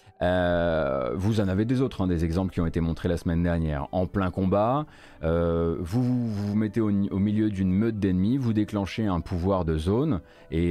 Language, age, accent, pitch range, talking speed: French, 30-49, French, 85-110 Hz, 205 wpm